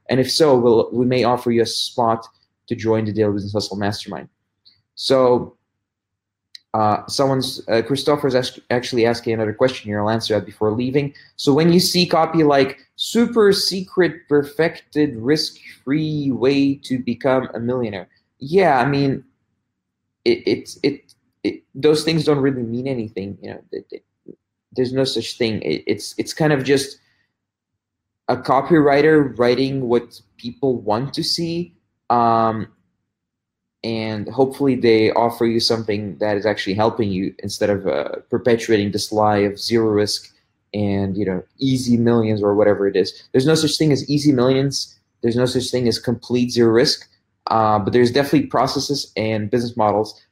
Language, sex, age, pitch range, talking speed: English, male, 20-39, 105-135 Hz, 165 wpm